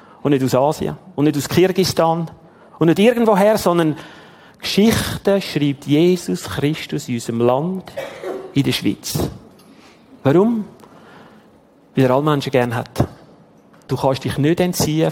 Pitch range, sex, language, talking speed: 140-190 Hz, male, German, 135 wpm